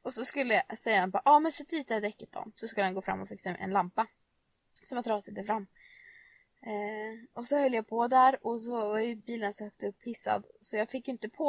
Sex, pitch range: female, 210-300 Hz